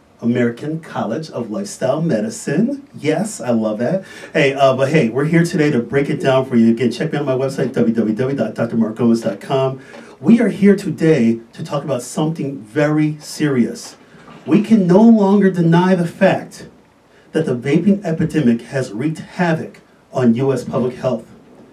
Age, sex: 40-59, male